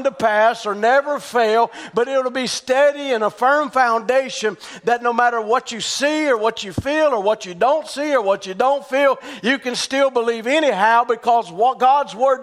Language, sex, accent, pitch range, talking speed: English, male, American, 230-270 Hz, 205 wpm